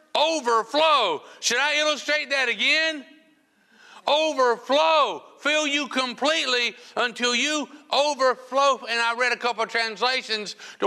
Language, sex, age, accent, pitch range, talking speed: English, male, 60-79, American, 210-295 Hz, 115 wpm